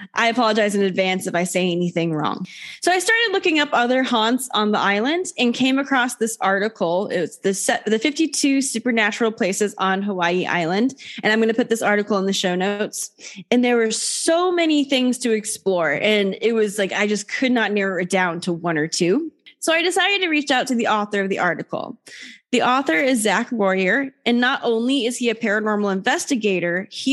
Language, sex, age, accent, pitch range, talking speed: English, female, 10-29, American, 190-240 Hz, 210 wpm